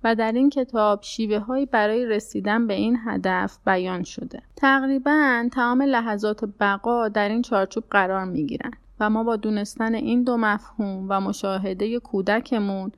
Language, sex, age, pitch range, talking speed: Persian, female, 30-49, 200-240 Hz, 150 wpm